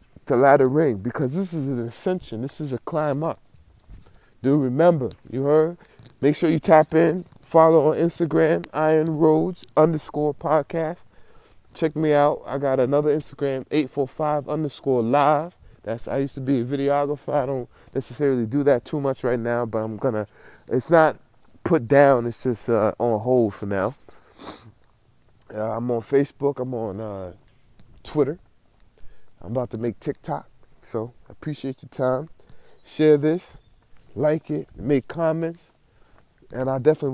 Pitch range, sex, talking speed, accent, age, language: 120-150 Hz, male, 155 wpm, American, 20-39, English